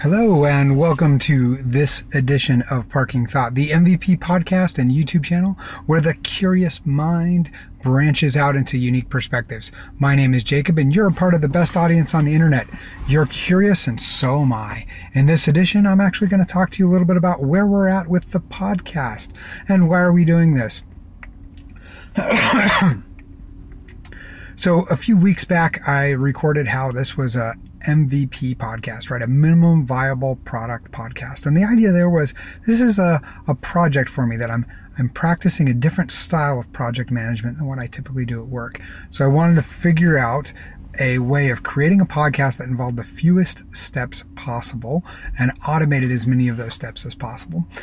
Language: English